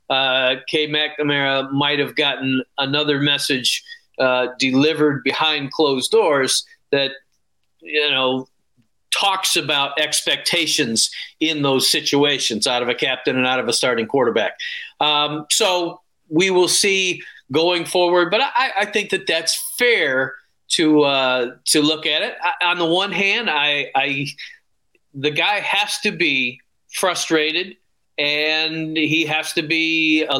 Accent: American